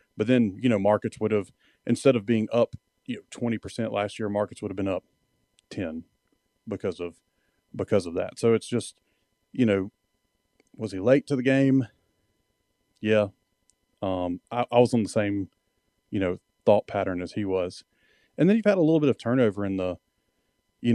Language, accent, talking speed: English, American, 185 wpm